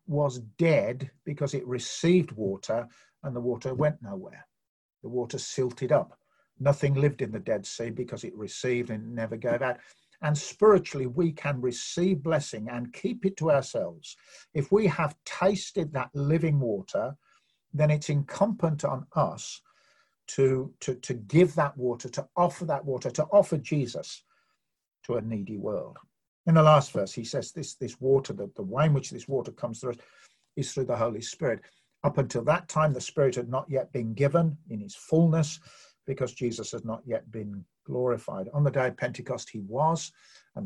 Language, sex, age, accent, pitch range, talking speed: English, male, 50-69, British, 125-160 Hz, 175 wpm